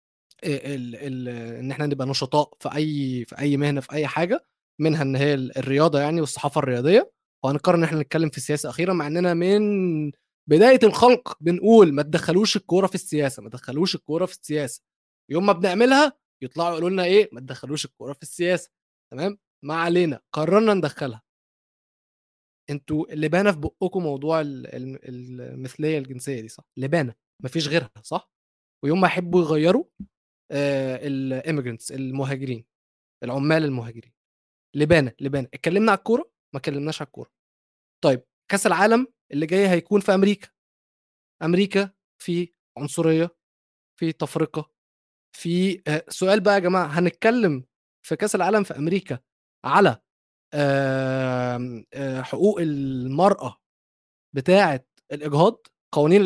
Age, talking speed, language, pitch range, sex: 20-39, 130 wpm, Arabic, 135-180 Hz, male